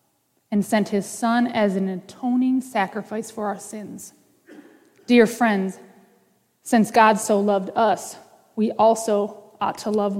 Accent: American